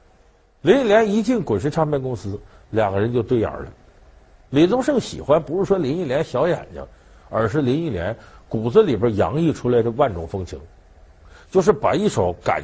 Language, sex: Chinese, male